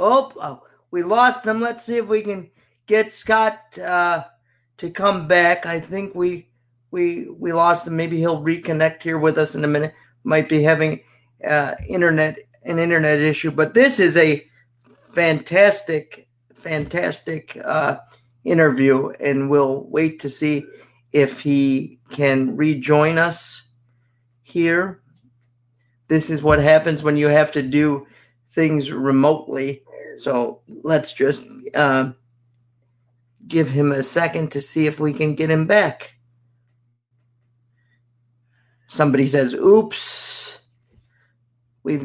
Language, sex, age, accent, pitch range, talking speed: English, male, 40-59, American, 120-170 Hz, 125 wpm